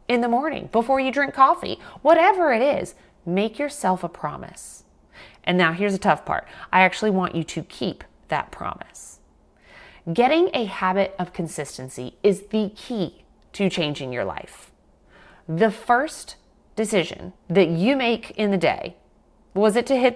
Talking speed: 160 wpm